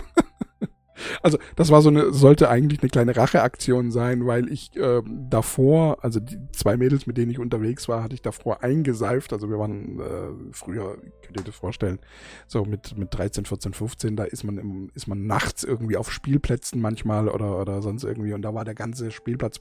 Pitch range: 115-160 Hz